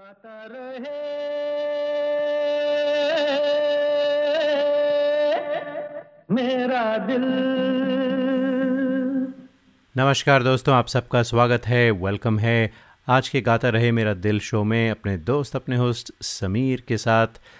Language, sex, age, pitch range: Hindi, male, 30-49, 105-140 Hz